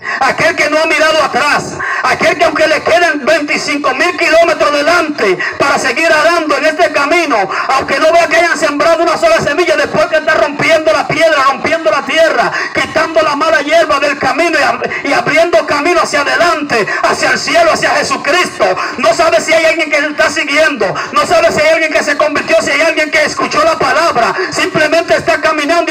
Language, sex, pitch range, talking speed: Spanish, male, 300-330 Hz, 190 wpm